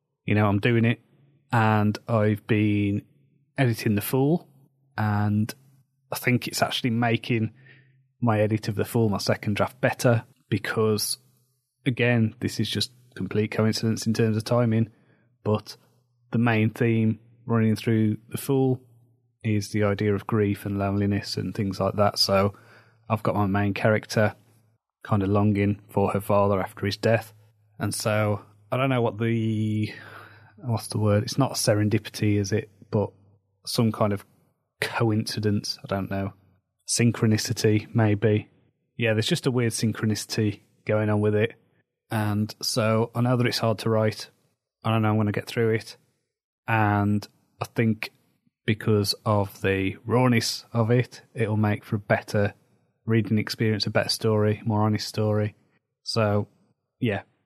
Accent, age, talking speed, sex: British, 30-49, 155 wpm, male